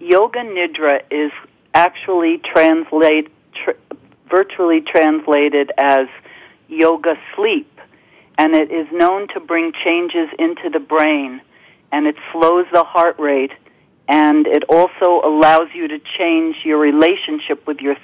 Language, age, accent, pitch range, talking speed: English, 50-69, American, 150-215 Hz, 125 wpm